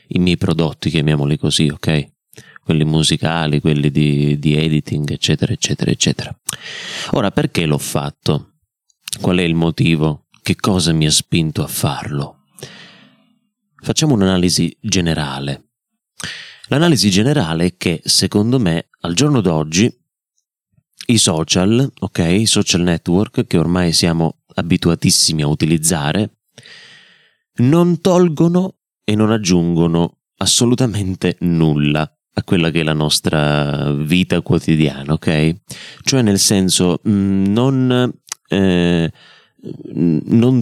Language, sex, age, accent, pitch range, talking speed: Italian, male, 30-49, native, 80-105 Hz, 110 wpm